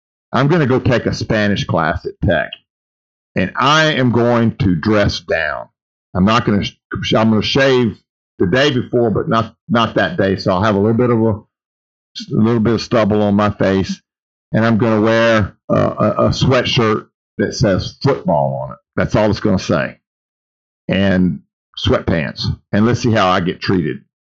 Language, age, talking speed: English, 50-69, 190 wpm